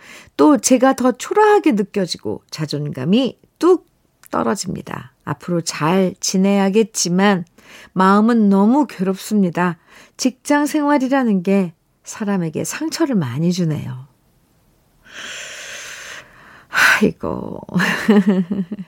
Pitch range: 170-215 Hz